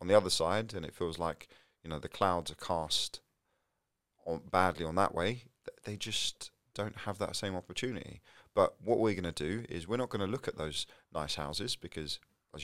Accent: British